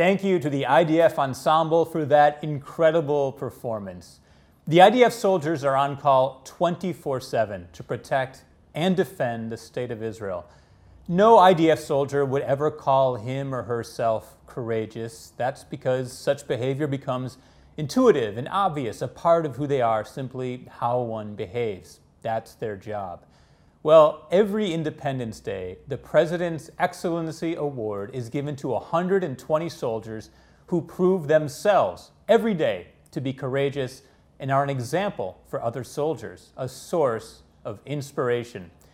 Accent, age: American, 30-49